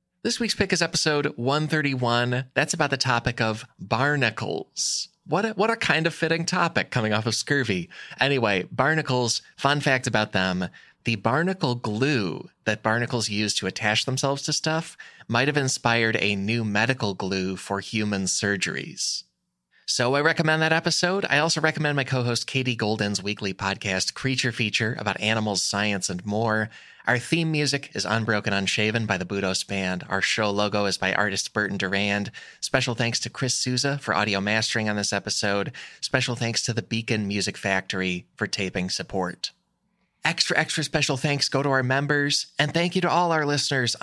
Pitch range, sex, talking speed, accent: 105-150 Hz, male, 170 wpm, American